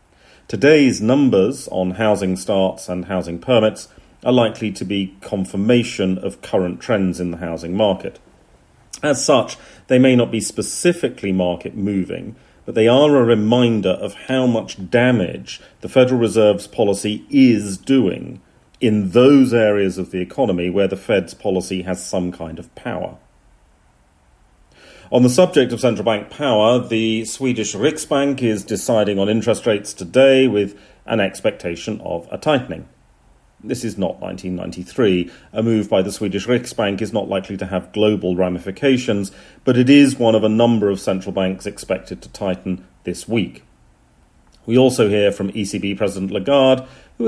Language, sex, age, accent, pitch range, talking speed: English, male, 40-59, British, 90-120 Hz, 155 wpm